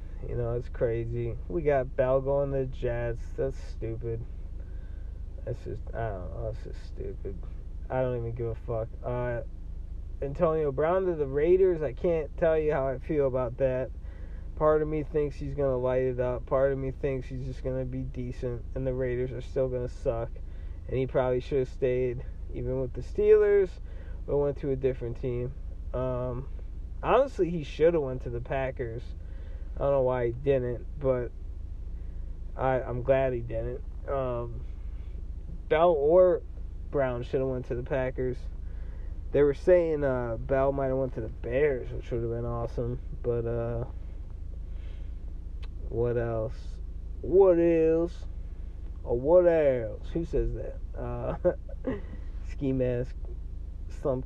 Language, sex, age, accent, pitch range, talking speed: English, male, 20-39, American, 80-135 Hz, 165 wpm